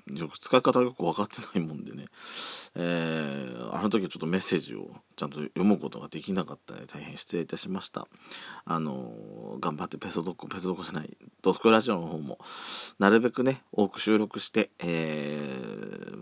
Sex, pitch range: male, 85-115 Hz